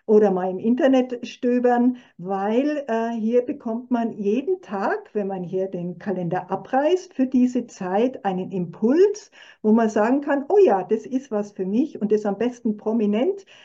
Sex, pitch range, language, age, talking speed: female, 190-245 Hz, German, 50-69, 170 wpm